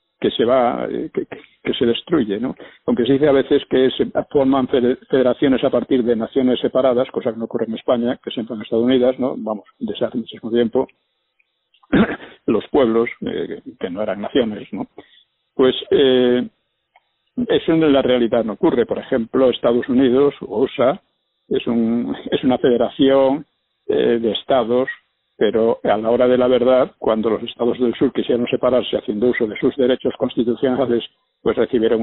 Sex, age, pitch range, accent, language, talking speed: male, 60-79, 115-130 Hz, Spanish, Spanish, 170 wpm